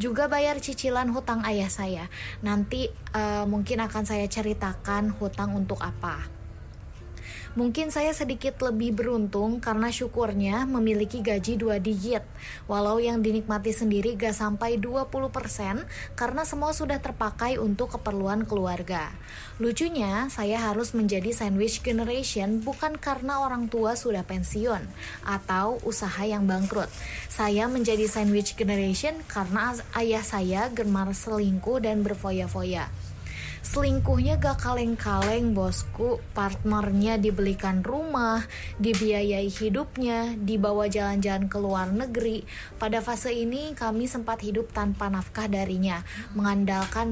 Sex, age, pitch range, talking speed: female, 20-39, 195-235 Hz, 115 wpm